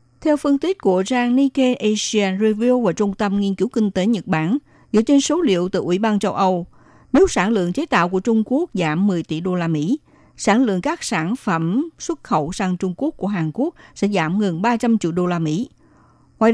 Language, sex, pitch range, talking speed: Vietnamese, female, 175-245 Hz, 220 wpm